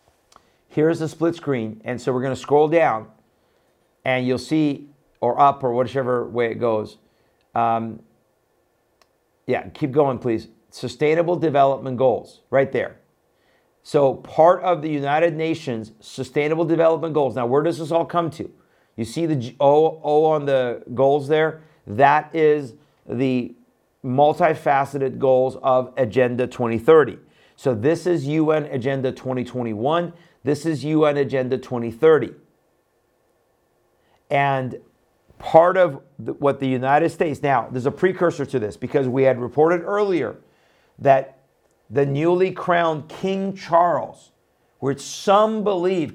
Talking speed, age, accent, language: 130 wpm, 50-69, American, English